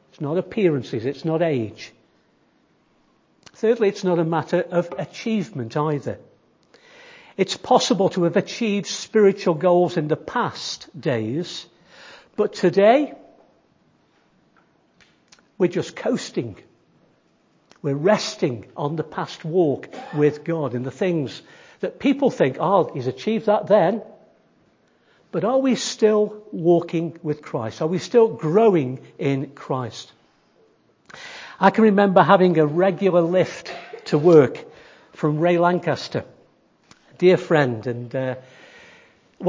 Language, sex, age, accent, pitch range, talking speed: English, male, 60-79, British, 155-210 Hz, 120 wpm